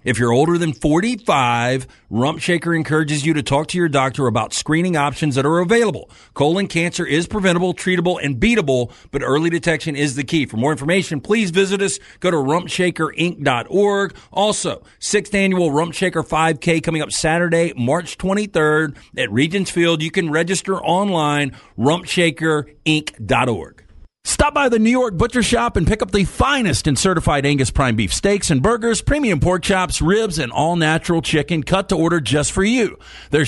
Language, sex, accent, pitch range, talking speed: English, male, American, 145-195 Hz, 170 wpm